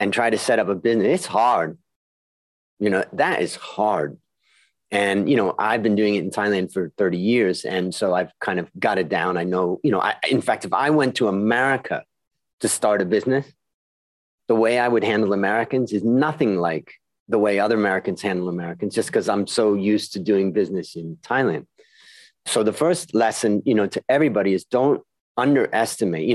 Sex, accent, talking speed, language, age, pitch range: male, American, 200 wpm, English, 30-49, 95-115 Hz